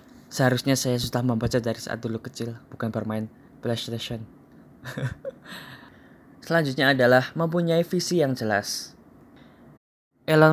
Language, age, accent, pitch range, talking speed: Indonesian, 20-39, native, 125-145 Hz, 105 wpm